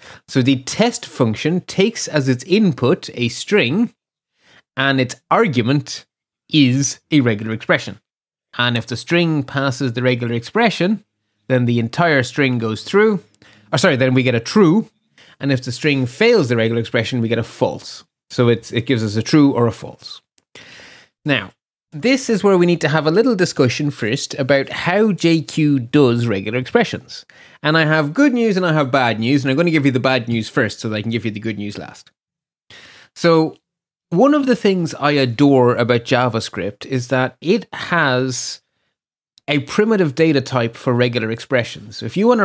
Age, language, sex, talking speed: 30-49, English, male, 185 wpm